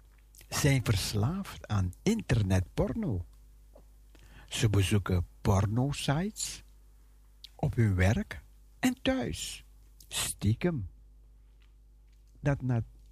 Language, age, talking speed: Dutch, 60-79, 70 wpm